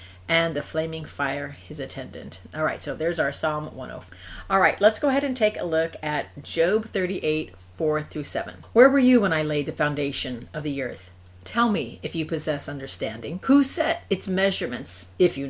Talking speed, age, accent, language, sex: 200 wpm, 50-69, American, English, female